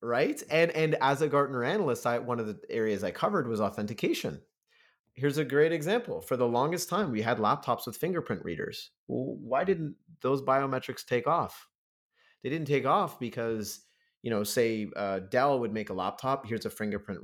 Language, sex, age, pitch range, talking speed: English, male, 30-49, 105-130 Hz, 190 wpm